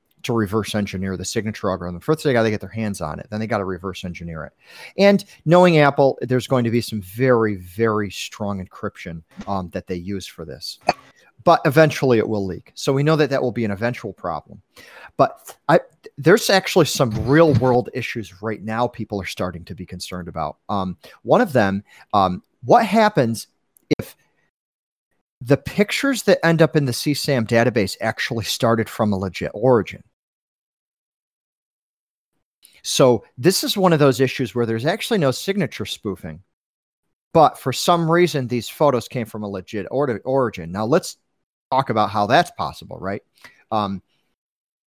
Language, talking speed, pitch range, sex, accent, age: English, 175 wpm, 100-140 Hz, male, American, 40-59